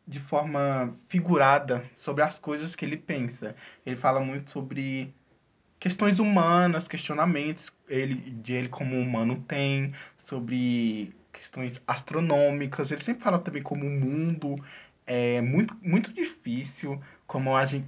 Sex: male